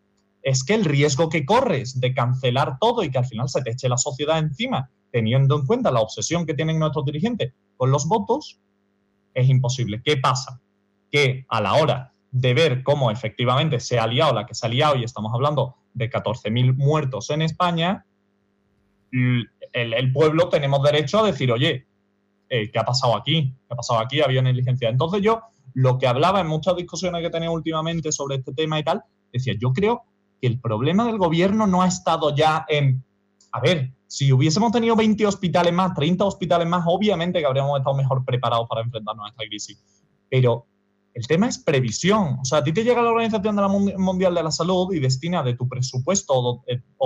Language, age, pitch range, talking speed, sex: Spanish, 20-39, 120-165 Hz, 200 wpm, male